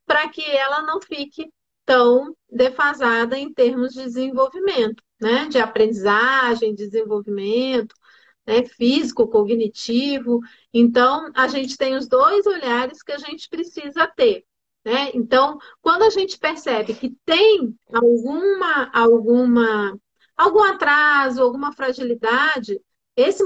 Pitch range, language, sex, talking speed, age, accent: 240-320 Hz, Portuguese, female, 115 wpm, 40-59, Brazilian